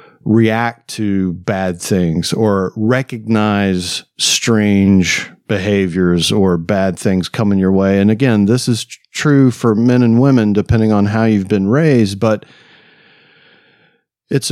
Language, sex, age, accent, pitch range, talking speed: English, male, 50-69, American, 95-110 Hz, 130 wpm